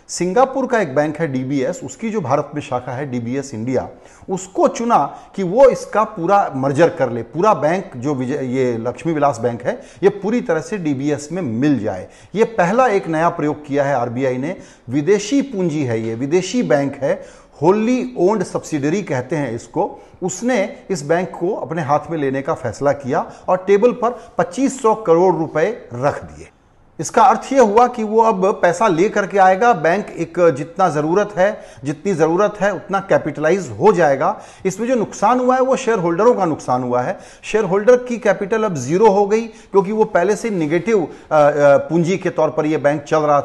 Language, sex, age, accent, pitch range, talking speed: Hindi, male, 40-59, native, 145-210 Hz, 175 wpm